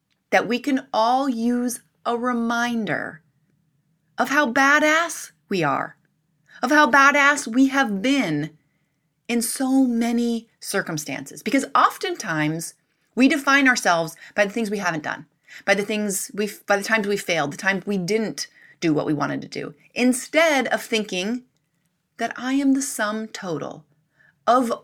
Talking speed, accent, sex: 150 wpm, American, female